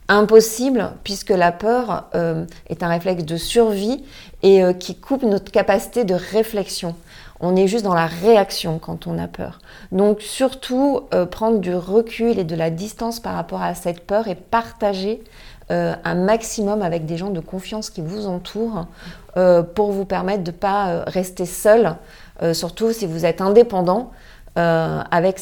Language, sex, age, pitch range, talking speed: French, female, 30-49, 175-215 Hz, 175 wpm